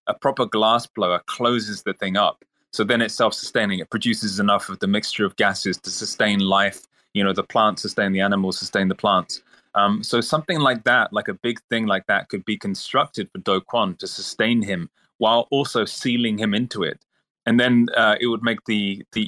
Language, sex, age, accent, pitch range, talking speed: English, male, 20-39, British, 100-115 Hz, 210 wpm